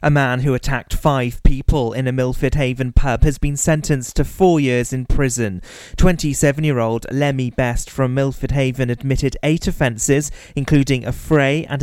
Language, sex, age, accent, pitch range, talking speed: English, male, 30-49, British, 125-150 Hz, 160 wpm